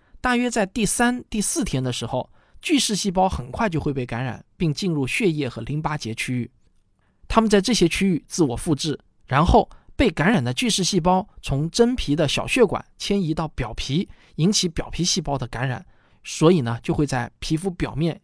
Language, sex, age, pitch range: Chinese, male, 20-39, 130-195 Hz